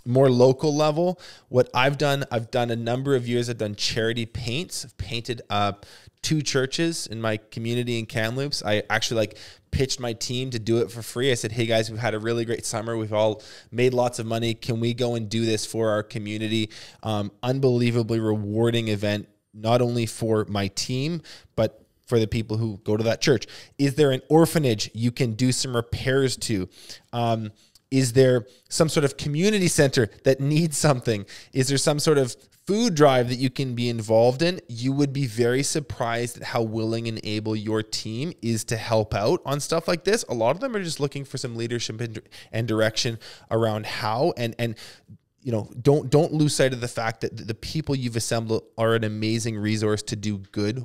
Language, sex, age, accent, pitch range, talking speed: English, male, 20-39, American, 110-130 Hz, 200 wpm